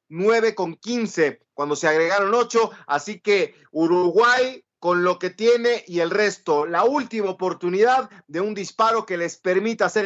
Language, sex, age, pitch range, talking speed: Spanish, male, 40-59, 175-230 Hz, 160 wpm